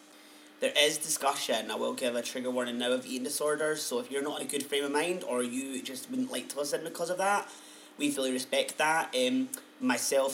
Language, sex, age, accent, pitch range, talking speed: English, male, 30-49, British, 125-160 Hz, 225 wpm